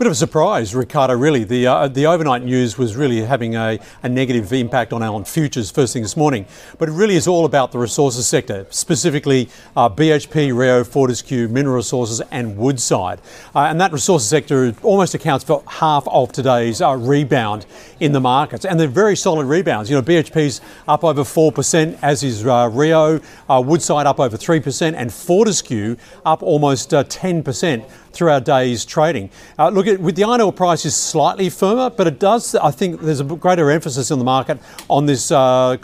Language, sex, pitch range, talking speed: English, male, 125-160 Hz, 190 wpm